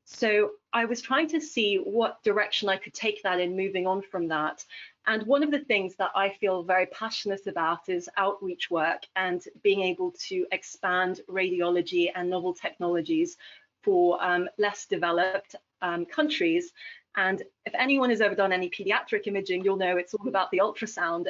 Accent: British